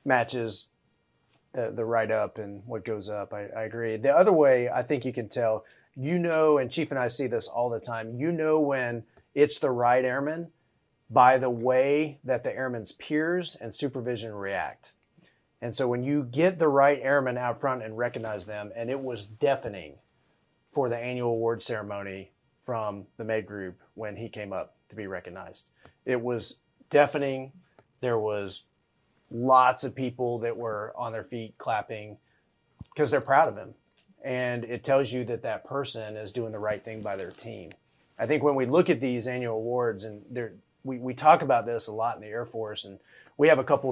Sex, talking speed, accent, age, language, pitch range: male, 190 wpm, American, 30-49, English, 110-135 Hz